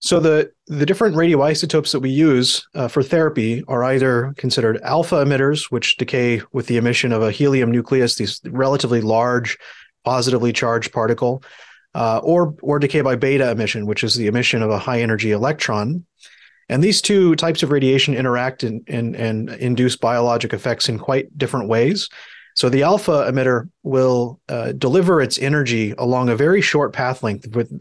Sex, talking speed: male, 175 wpm